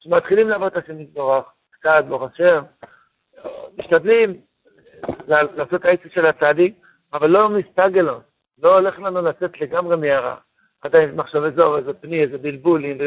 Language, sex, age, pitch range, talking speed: Hebrew, male, 60-79, 160-195 Hz, 145 wpm